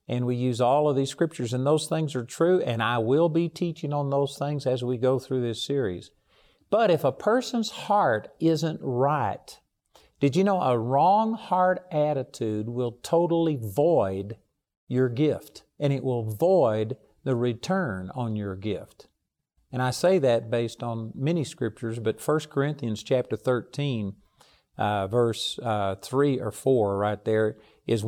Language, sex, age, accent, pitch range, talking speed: English, male, 50-69, American, 120-155 Hz, 160 wpm